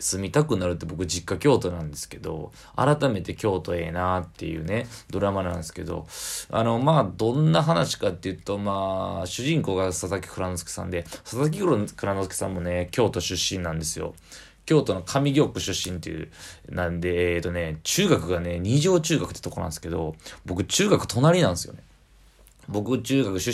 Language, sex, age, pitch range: Japanese, male, 20-39, 85-115 Hz